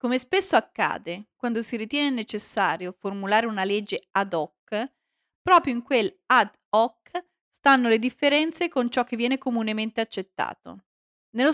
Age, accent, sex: 30-49, native, female